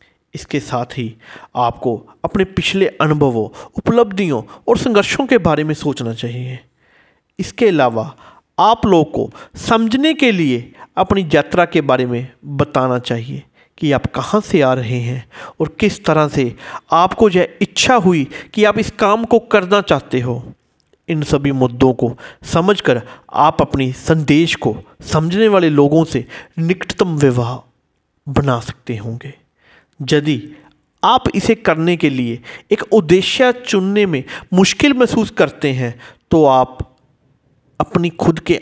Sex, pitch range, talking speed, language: male, 130-190 Hz, 140 wpm, Hindi